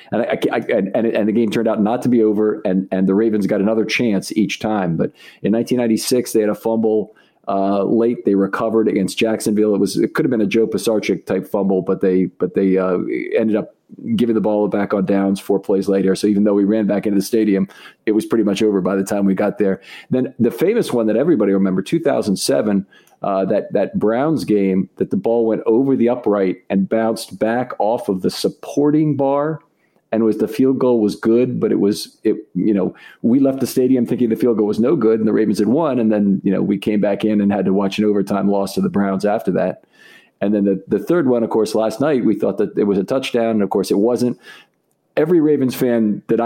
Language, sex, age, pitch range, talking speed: English, male, 40-59, 100-120 Hz, 240 wpm